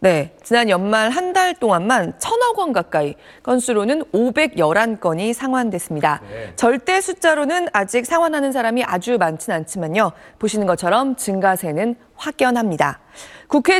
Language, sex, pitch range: Korean, female, 180-290 Hz